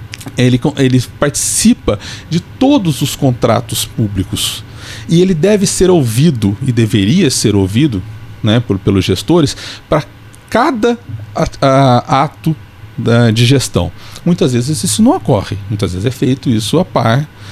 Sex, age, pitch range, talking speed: male, 40-59, 105-160 Hz, 125 wpm